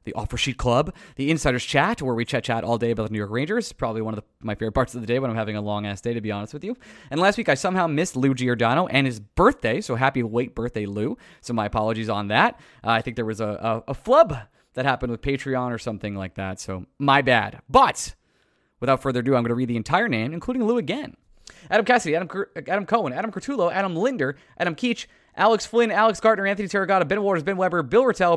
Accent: American